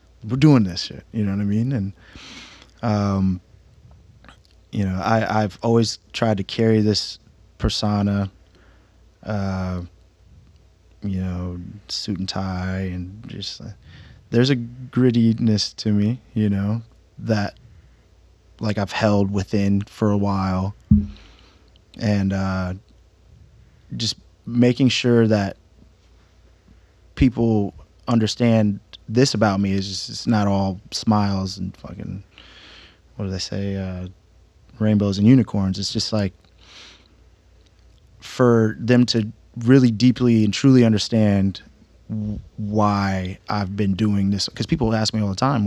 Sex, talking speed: male, 125 wpm